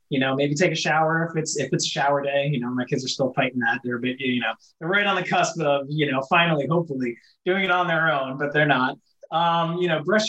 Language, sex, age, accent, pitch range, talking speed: English, male, 20-39, American, 130-165 Hz, 275 wpm